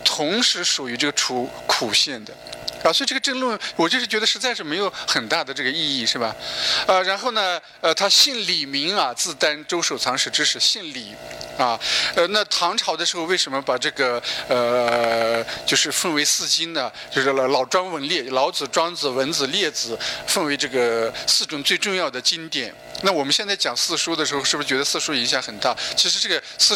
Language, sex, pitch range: Chinese, male, 120-195 Hz